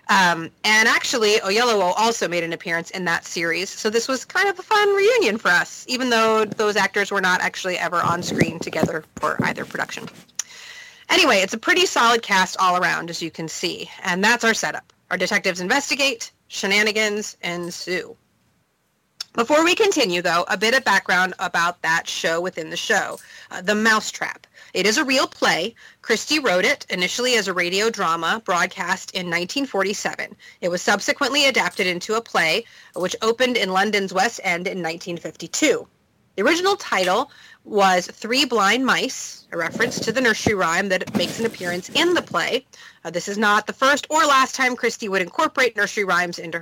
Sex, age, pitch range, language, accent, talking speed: female, 30-49, 180-255 Hz, English, American, 180 wpm